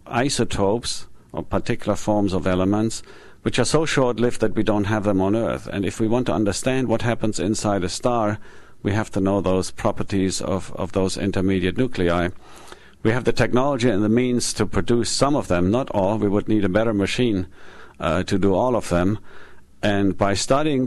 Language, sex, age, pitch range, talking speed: English, male, 50-69, 95-110 Hz, 195 wpm